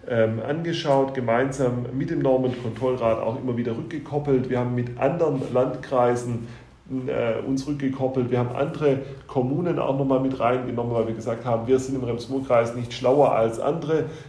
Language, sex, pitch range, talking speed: German, male, 110-130 Hz, 155 wpm